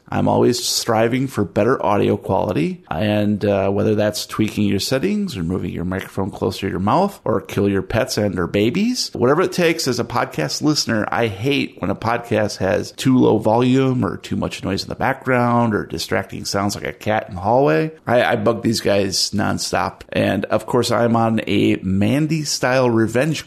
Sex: male